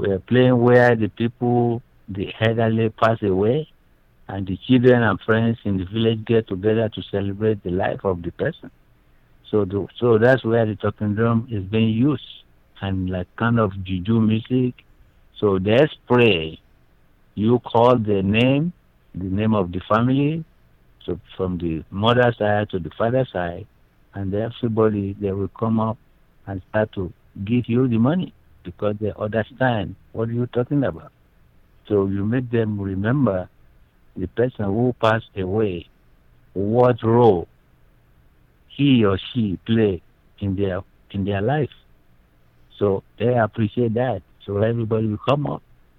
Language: English